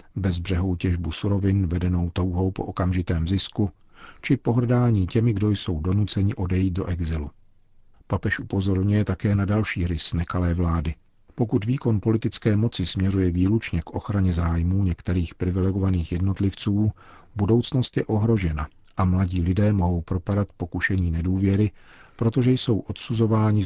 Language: Czech